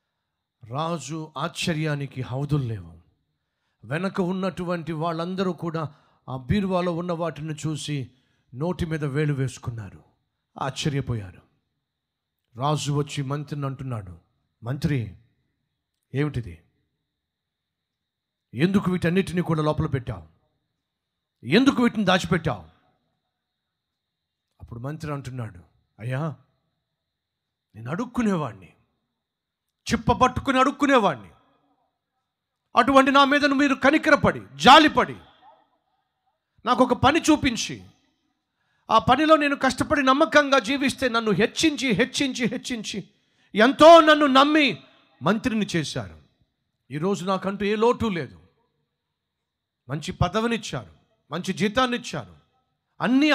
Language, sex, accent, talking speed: Telugu, male, native, 85 wpm